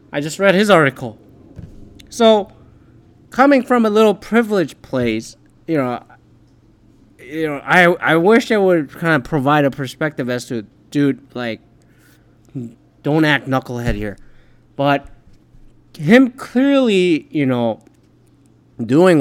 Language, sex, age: English, male, 20-39